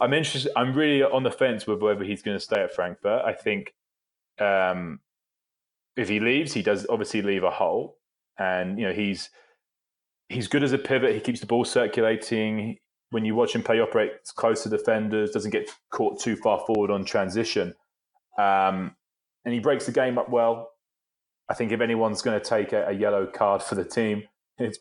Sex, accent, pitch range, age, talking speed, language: male, British, 100-120 Hz, 20-39, 200 wpm, English